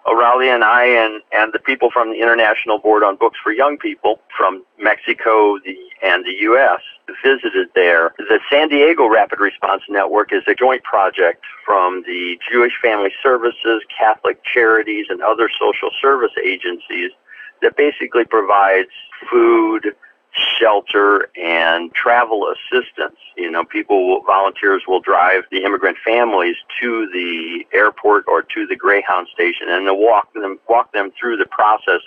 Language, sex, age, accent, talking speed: English, male, 50-69, American, 150 wpm